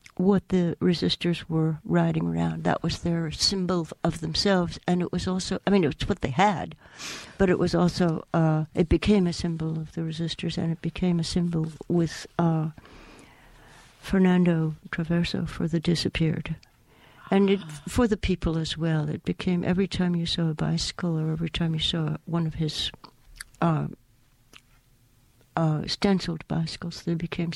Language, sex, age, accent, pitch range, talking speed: English, female, 60-79, American, 160-180 Hz, 160 wpm